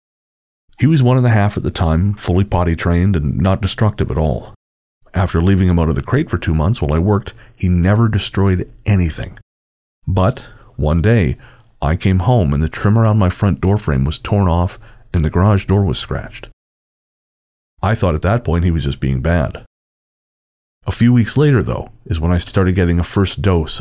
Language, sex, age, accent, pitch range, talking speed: English, male, 40-59, American, 80-100 Hz, 200 wpm